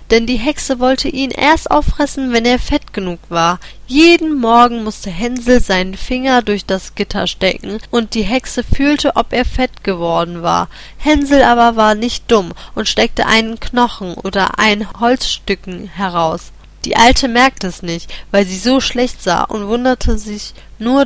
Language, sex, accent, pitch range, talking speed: Turkish, female, German, 200-260 Hz, 165 wpm